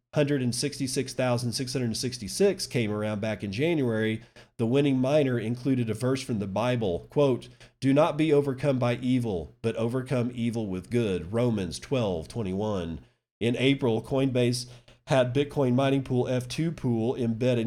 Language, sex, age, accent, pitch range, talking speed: English, male, 40-59, American, 105-130 Hz, 135 wpm